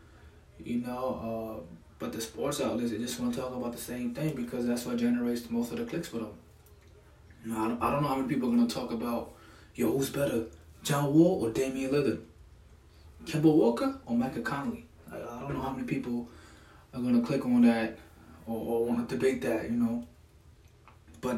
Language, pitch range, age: English, 85-125 Hz, 20-39